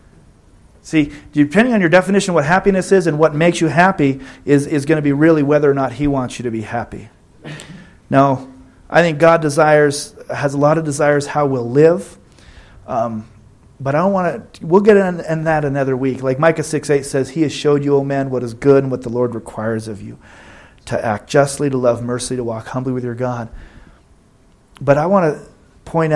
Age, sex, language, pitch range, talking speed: 40-59, male, English, 115-155 Hz, 215 wpm